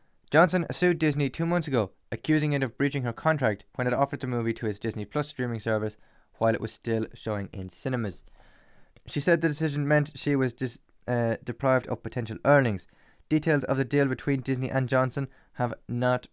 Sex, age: male, 20-39